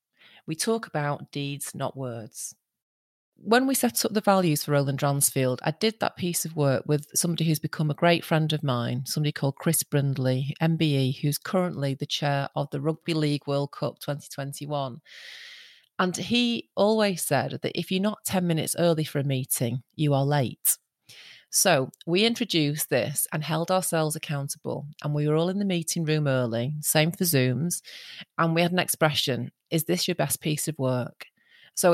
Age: 30-49